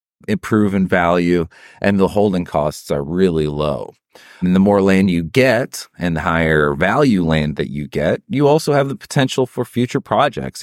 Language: English